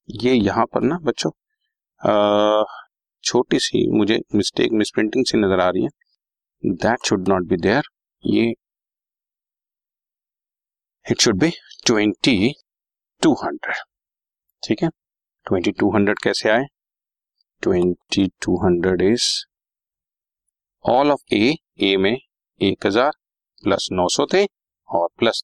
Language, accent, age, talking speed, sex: Hindi, native, 50-69, 110 wpm, male